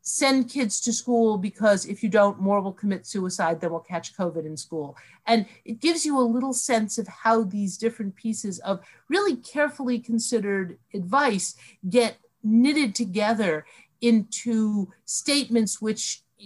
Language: English